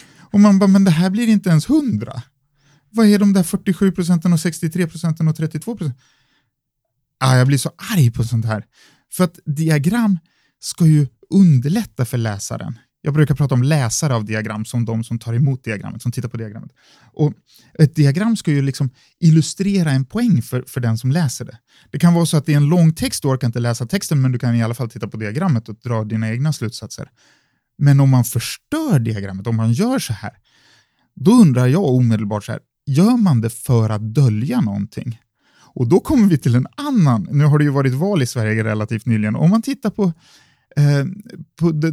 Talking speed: 210 wpm